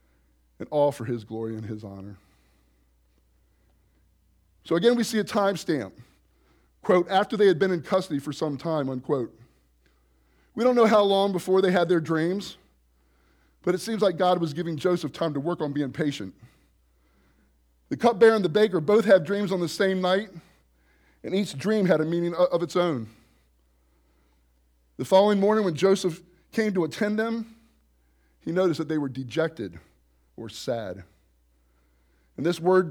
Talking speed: 165 wpm